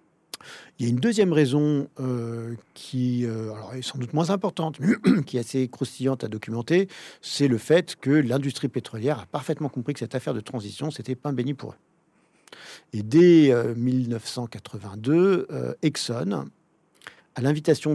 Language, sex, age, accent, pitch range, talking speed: French, male, 50-69, French, 120-145 Hz, 165 wpm